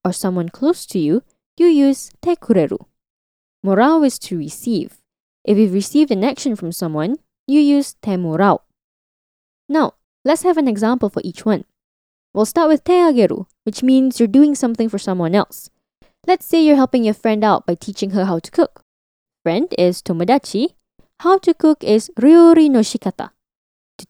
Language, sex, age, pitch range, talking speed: English, female, 10-29, 195-295 Hz, 170 wpm